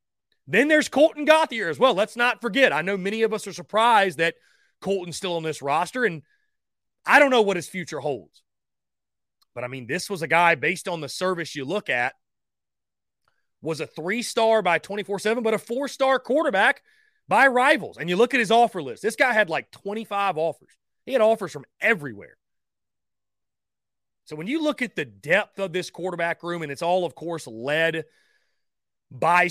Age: 30-49